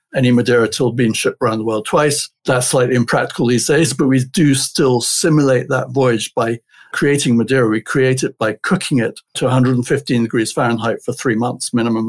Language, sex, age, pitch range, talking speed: English, male, 60-79, 120-140 Hz, 190 wpm